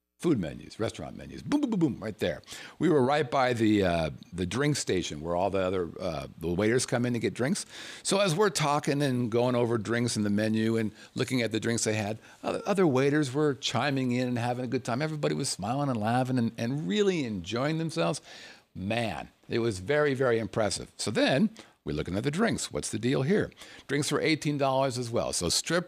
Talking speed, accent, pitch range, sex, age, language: 215 wpm, American, 100-140 Hz, male, 50-69, English